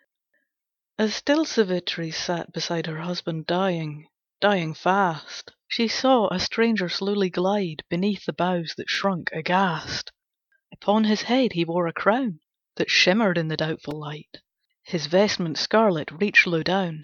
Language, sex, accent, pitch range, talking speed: English, female, British, 160-205 Hz, 140 wpm